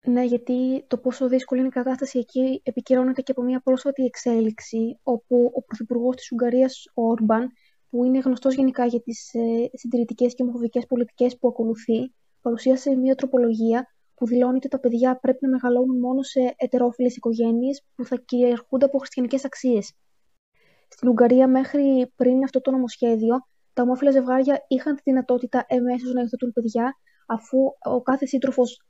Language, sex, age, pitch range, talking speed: Greek, female, 20-39, 240-260 Hz, 160 wpm